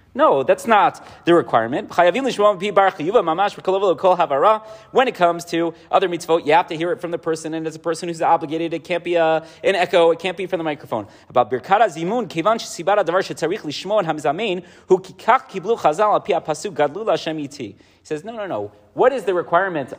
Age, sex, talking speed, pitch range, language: 30-49, male, 140 wpm, 160-210 Hz, English